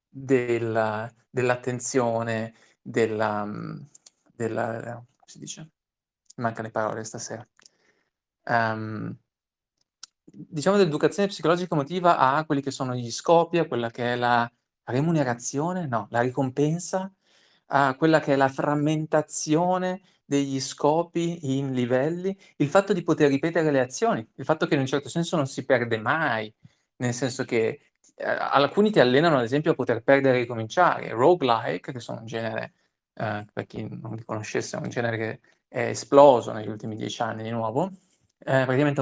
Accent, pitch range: native, 120-155 Hz